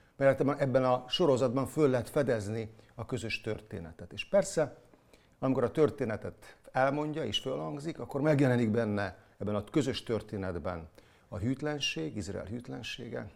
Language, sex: Hungarian, male